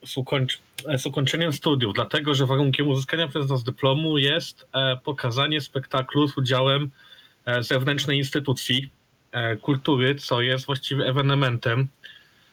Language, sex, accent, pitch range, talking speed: Polish, male, native, 125-140 Hz, 130 wpm